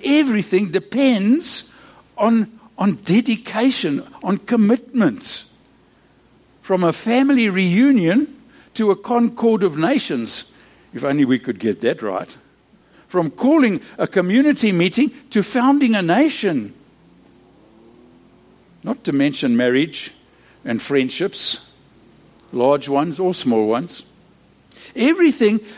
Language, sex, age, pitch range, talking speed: English, male, 60-79, 135-230 Hz, 100 wpm